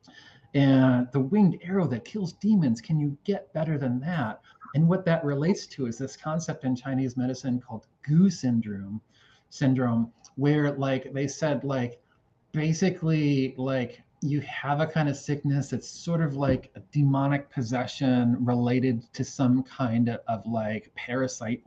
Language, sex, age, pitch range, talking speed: English, male, 30-49, 125-150 Hz, 155 wpm